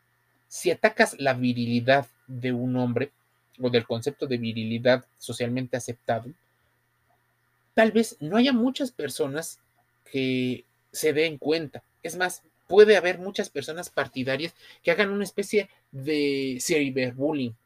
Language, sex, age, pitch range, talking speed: Spanish, male, 30-49, 120-165 Hz, 125 wpm